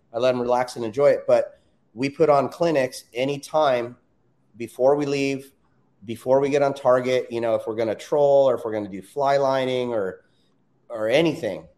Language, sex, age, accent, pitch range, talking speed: English, male, 30-49, American, 115-140 Hz, 200 wpm